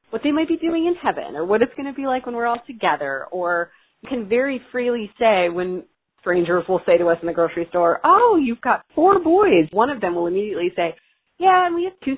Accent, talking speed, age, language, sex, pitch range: American, 245 wpm, 30-49, English, female, 165-210 Hz